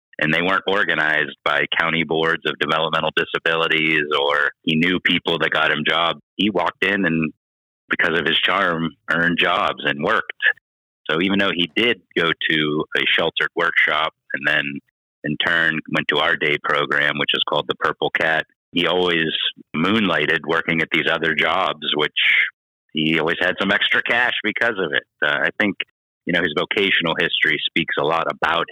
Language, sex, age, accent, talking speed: English, male, 30-49, American, 180 wpm